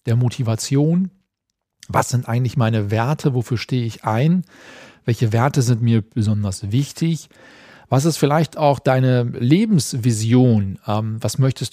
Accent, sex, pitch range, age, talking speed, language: German, male, 115-140 Hz, 40-59, 135 wpm, German